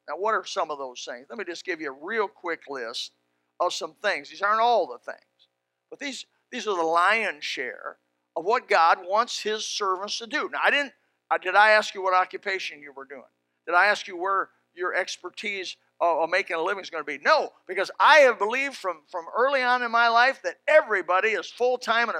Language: English